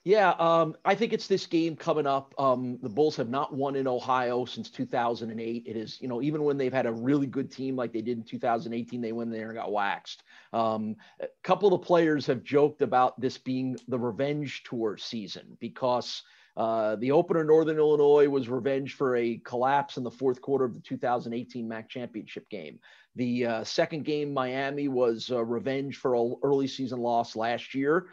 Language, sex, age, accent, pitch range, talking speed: English, male, 30-49, American, 125-150 Hz, 200 wpm